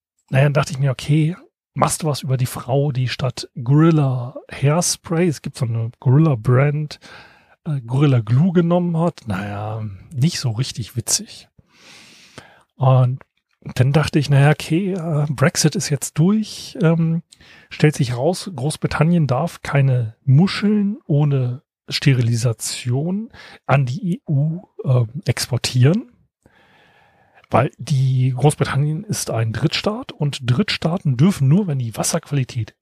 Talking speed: 125 wpm